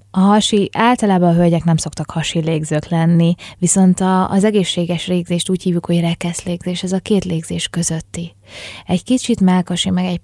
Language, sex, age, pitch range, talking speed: Hungarian, female, 20-39, 165-185 Hz, 170 wpm